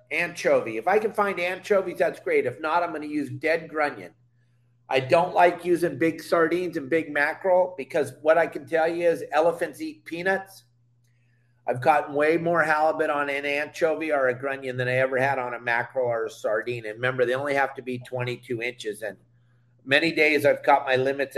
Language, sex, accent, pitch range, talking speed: English, male, American, 125-170 Hz, 200 wpm